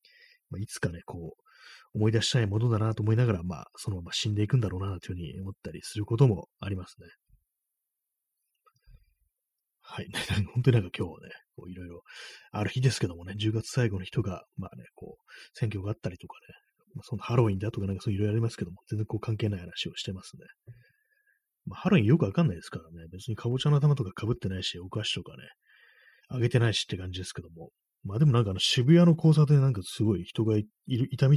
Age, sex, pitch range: 30-49, male, 95-125 Hz